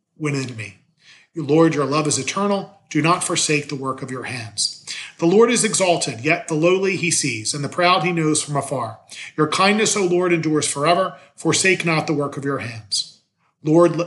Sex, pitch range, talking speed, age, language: male, 140-175 Hz, 190 wpm, 40-59, English